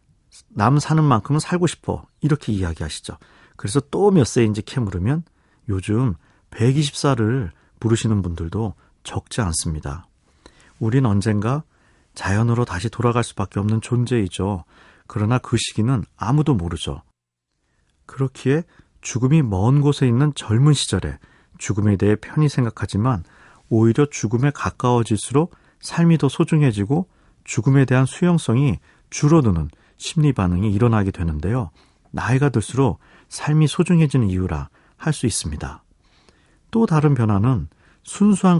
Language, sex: Korean, male